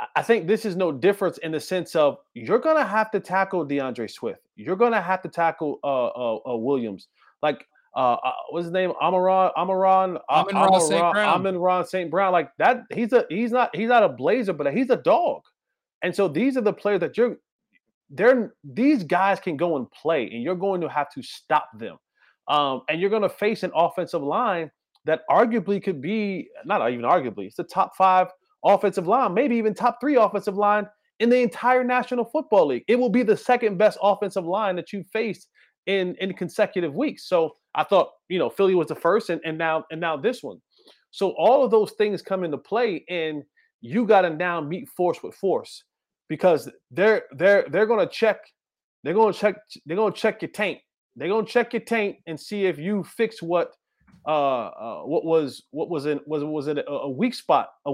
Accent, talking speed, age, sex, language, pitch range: American, 200 wpm, 30-49, male, English, 170-225 Hz